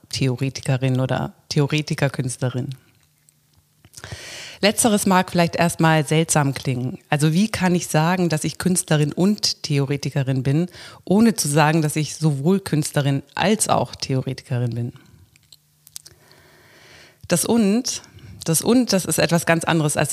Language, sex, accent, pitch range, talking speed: German, female, German, 135-170 Hz, 120 wpm